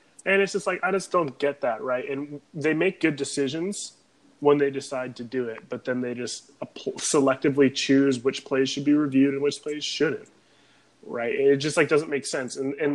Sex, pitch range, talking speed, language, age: male, 135-165 Hz, 215 wpm, English, 20-39